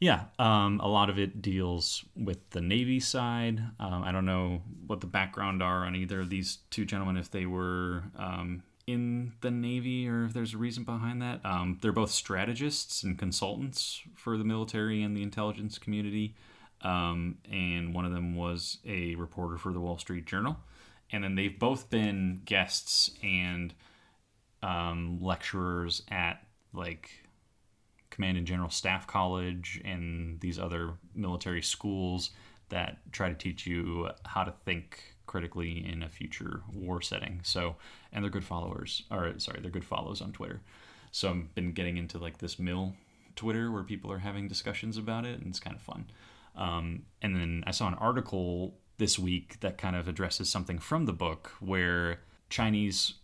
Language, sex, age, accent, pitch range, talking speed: English, male, 30-49, American, 90-105 Hz, 170 wpm